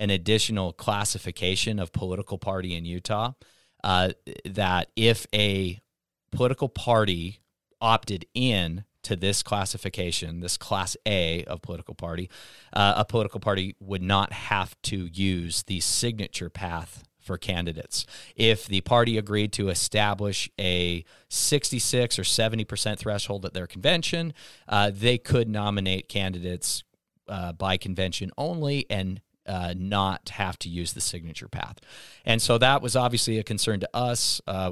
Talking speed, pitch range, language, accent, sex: 140 wpm, 90-115 Hz, English, American, male